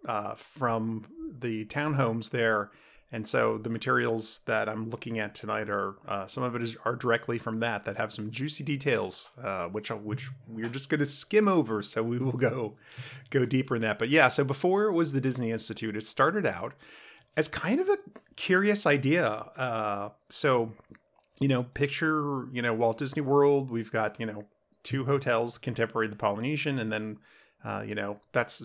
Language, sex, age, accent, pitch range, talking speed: English, male, 30-49, American, 110-130 Hz, 185 wpm